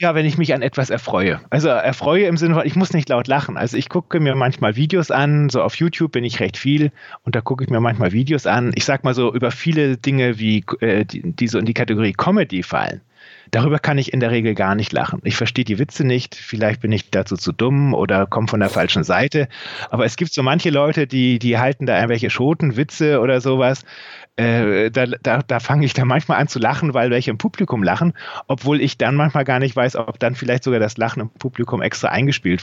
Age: 30-49